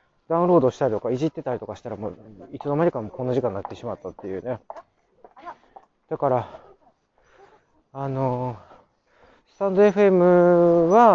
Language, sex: Japanese, male